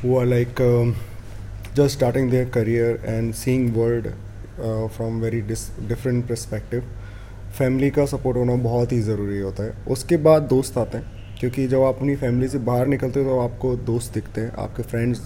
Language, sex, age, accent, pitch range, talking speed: Hindi, male, 30-49, native, 110-135 Hz, 190 wpm